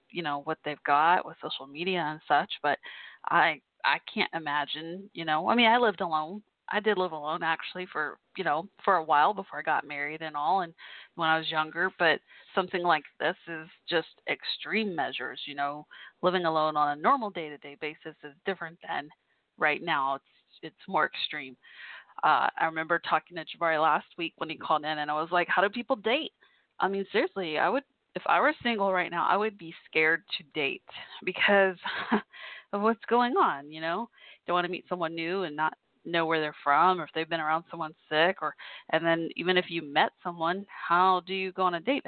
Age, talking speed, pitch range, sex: 20-39, 215 wpm, 160-195 Hz, female